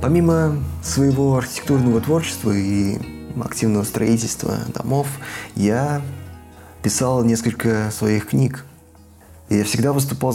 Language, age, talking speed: Russian, 20-39, 95 wpm